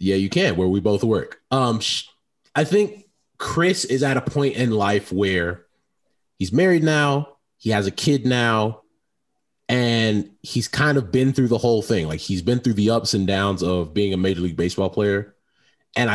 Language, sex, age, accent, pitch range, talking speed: English, male, 30-49, American, 105-145 Hz, 190 wpm